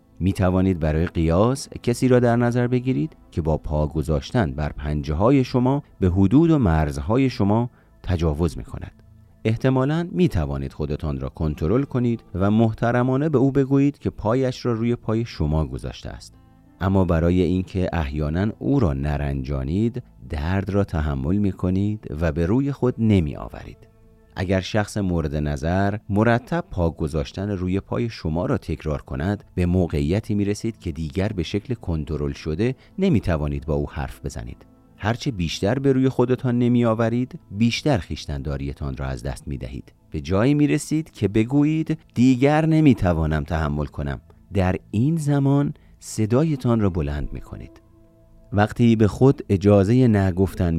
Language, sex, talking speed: Persian, male, 145 wpm